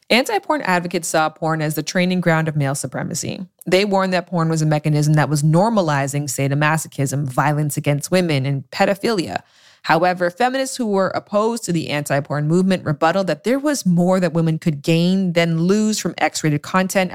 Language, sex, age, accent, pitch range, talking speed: English, female, 20-39, American, 155-200 Hz, 175 wpm